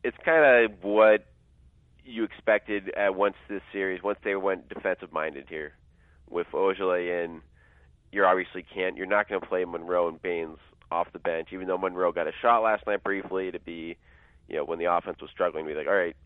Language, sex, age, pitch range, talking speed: English, male, 30-49, 75-95 Hz, 205 wpm